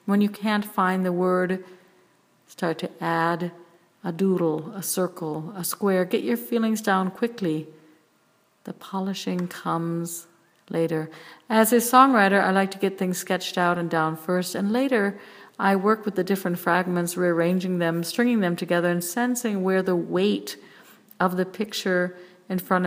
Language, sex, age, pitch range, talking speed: English, female, 50-69, 170-200 Hz, 155 wpm